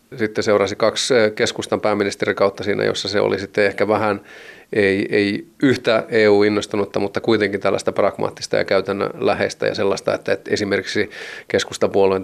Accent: native